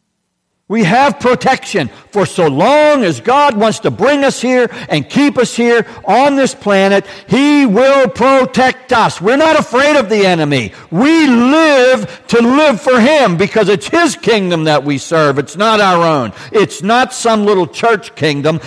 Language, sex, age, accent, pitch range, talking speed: English, male, 60-79, American, 150-255 Hz, 170 wpm